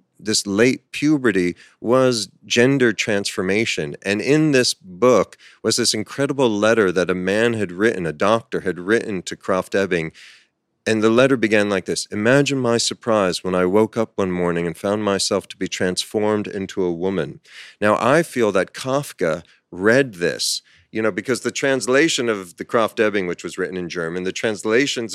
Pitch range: 95-125 Hz